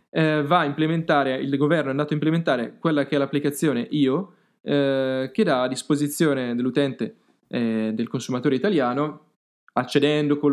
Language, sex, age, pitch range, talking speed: Italian, male, 10-29, 135-160 Hz, 140 wpm